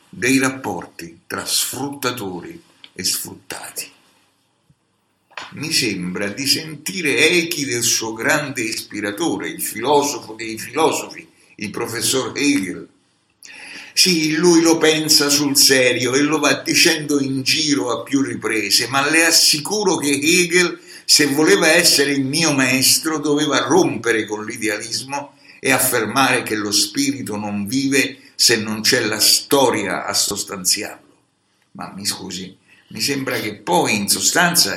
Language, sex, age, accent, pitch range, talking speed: Italian, male, 60-79, native, 110-155 Hz, 130 wpm